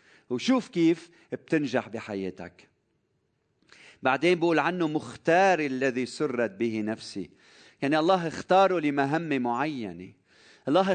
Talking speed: 100 wpm